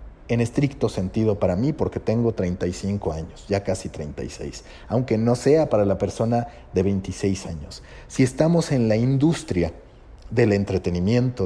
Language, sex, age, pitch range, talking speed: Spanish, male, 40-59, 95-150 Hz, 145 wpm